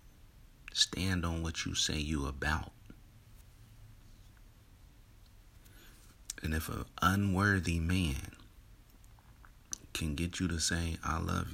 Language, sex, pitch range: English, male, 80-105 Hz